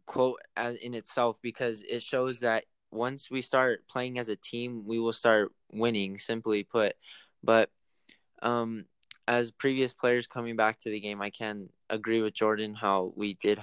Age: 10-29